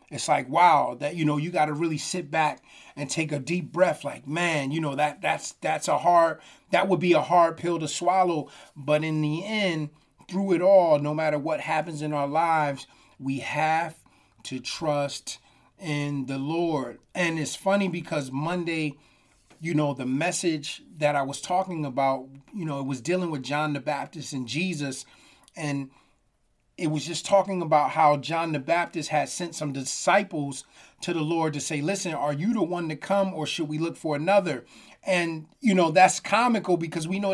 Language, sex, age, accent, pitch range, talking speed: English, male, 30-49, American, 150-180 Hz, 195 wpm